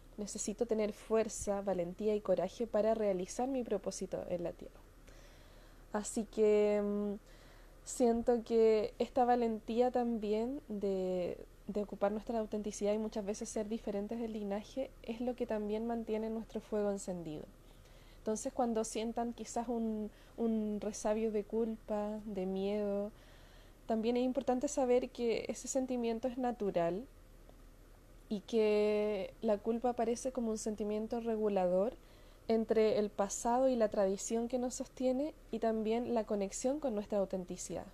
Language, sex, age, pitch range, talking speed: Spanish, female, 20-39, 205-240 Hz, 135 wpm